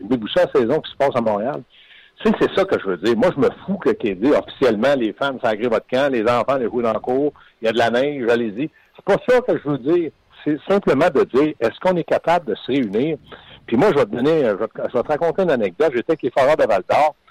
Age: 60-79